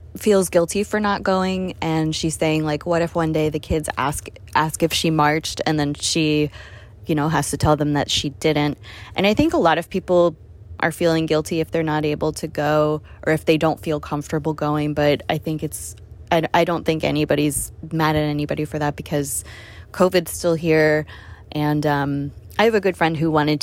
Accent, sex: American, female